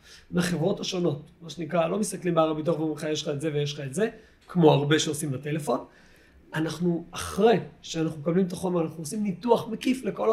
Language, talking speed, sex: Hebrew, 190 wpm, male